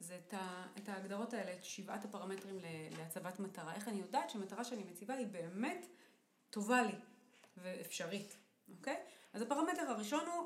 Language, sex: Hebrew, female